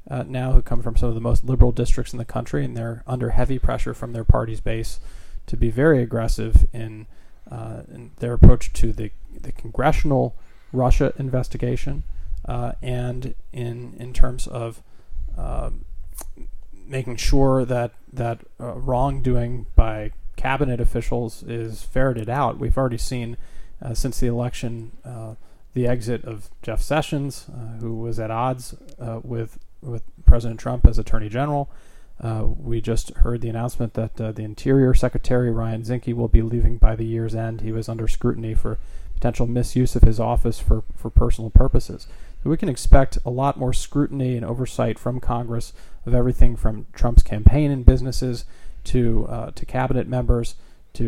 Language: English